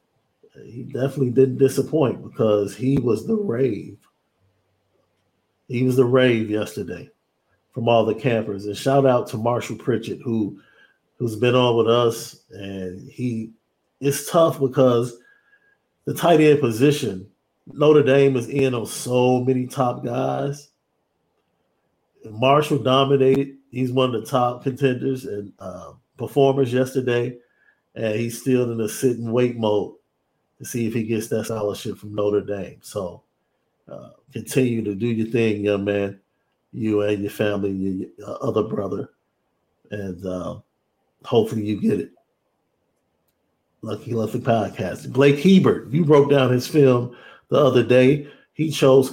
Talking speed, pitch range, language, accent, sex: 140 wpm, 110-135 Hz, English, American, male